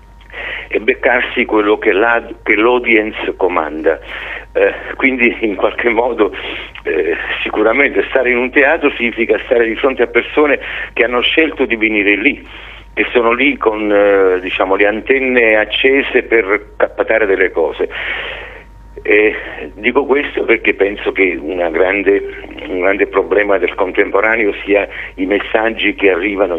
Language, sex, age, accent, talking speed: Italian, male, 50-69, native, 135 wpm